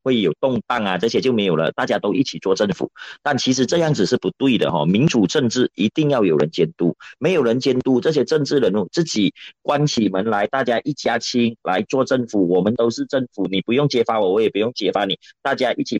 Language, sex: Chinese, male